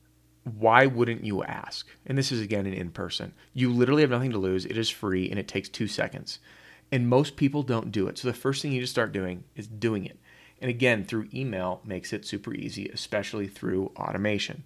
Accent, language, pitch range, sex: American, English, 100-130 Hz, male